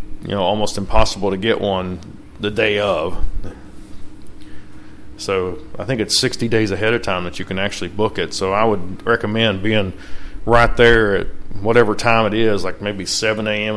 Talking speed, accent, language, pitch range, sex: 185 wpm, American, English, 100-115 Hz, male